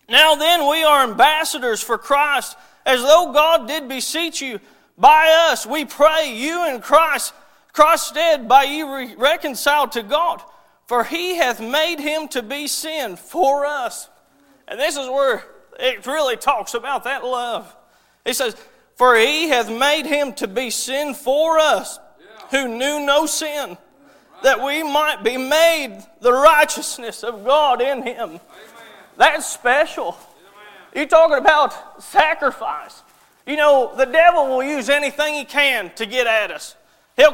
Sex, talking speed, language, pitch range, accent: male, 150 wpm, English, 270-325 Hz, American